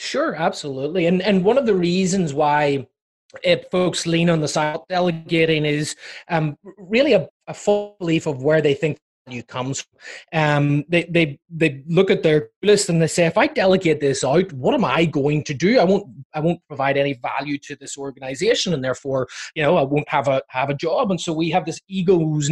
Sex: male